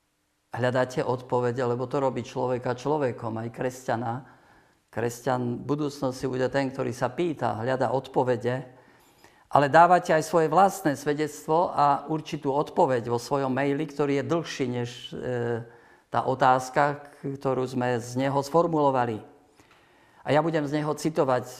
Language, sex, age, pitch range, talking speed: Slovak, male, 50-69, 130-150 Hz, 135 wpm